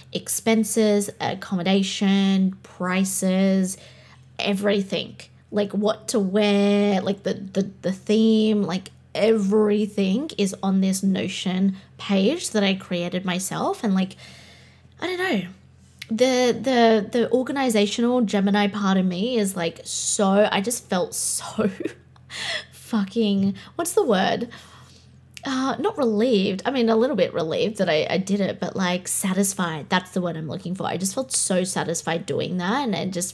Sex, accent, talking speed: female, Australian, 145 wpm